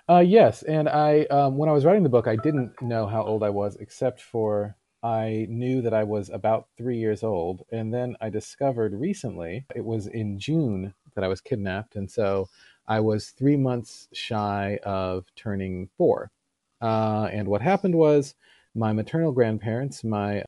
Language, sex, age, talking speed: English, male, 40-59, 180 wpm